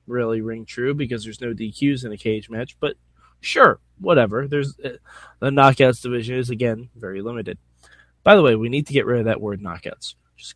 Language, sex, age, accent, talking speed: English, male, 20-39, American, 200 wpm